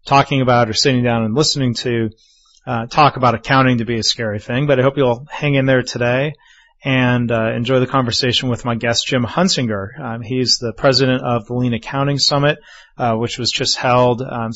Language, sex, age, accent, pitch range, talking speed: English, male, 30-49, American, 120-140 Hz, 205 wpm